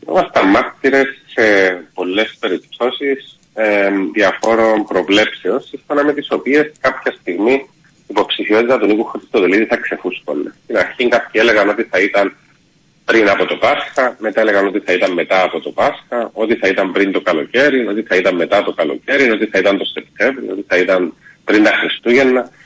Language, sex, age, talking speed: Greek, male, 30-49, 170 wpm